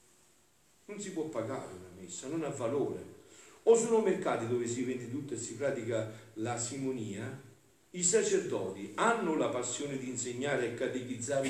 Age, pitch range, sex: 50-69, 110-155 Hz, male